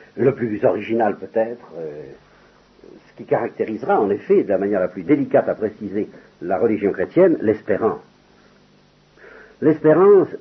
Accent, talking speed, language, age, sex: French, 135 wpm, French, 60-79, male